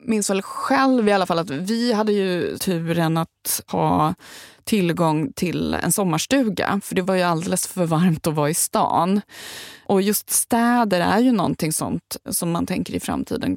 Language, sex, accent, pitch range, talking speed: Swedish, female, native, 165-210 Hz, 175 wpm